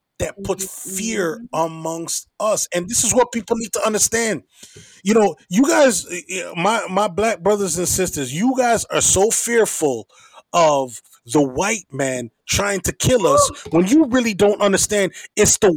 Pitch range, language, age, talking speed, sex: 165-225 Hz, English, 30-49, 165 wpm, male